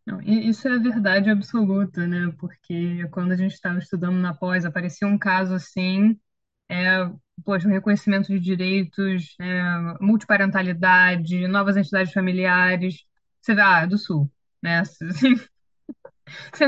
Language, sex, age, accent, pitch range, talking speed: Portuguese, female, 10-29, Brazilian, 175-205 Hz, 140 wpm